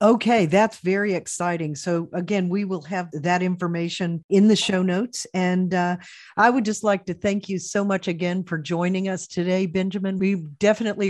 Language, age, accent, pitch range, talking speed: English, 50-69, American, 170-200 Hz, 185 wpm